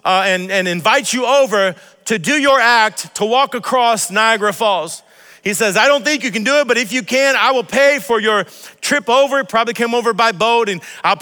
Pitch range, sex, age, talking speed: 205-255 Hz, male, 40-59, 225 wpm